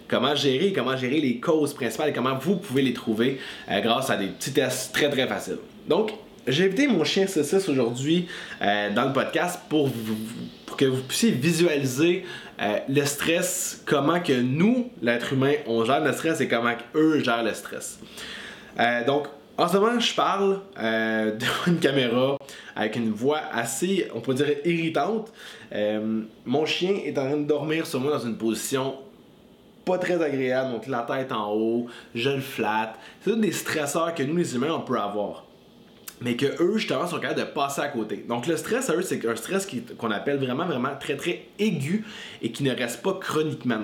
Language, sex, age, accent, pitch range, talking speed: French, male, 20-39, Canadian, 120-175 Hz, 195 wpm